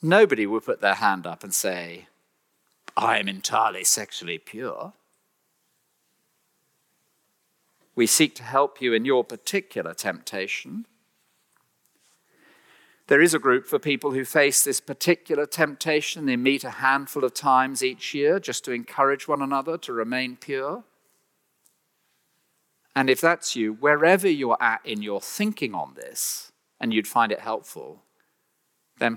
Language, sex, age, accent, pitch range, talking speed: English, male, 50-69, British, 145-235 Hz, 140 wpm